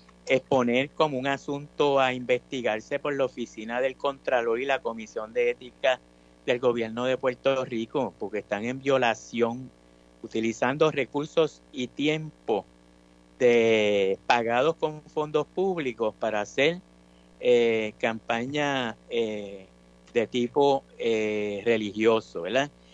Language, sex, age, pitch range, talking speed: Spanish, male, 50-69, 105-145 Hz, 115 wpm